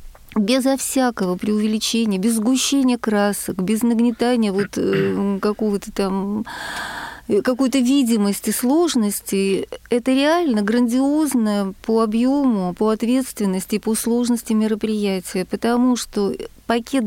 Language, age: Russian, 40-59